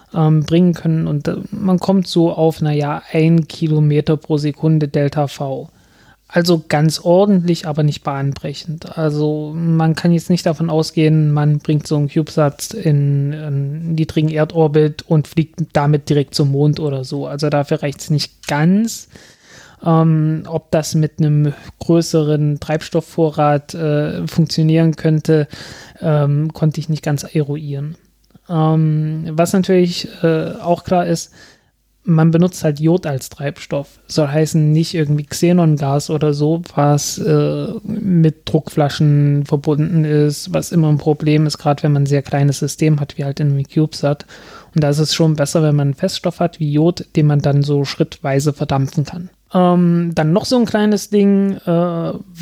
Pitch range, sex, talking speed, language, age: 150-170 Hz, male, 155 wpm, German, 20-39